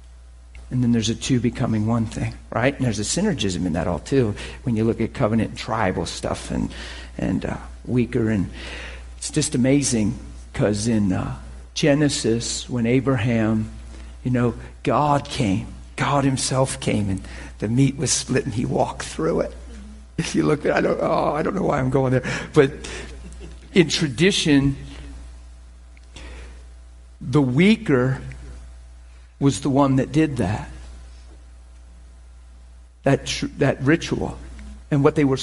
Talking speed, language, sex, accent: 150 wpm, English, male, American